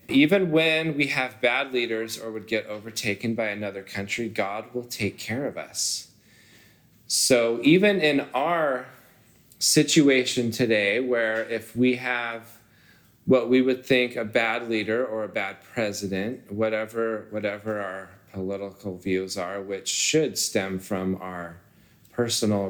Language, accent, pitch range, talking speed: English, American, 100-130 Hz, 135 wpm